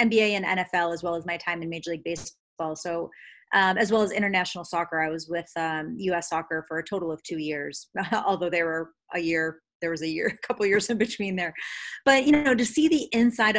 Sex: female